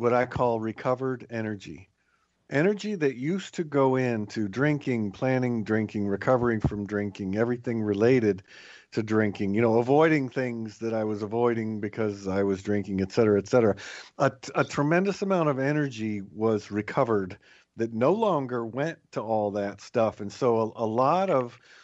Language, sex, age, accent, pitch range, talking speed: English, male, 50-69, American, 110-140 Hz, 160 wpm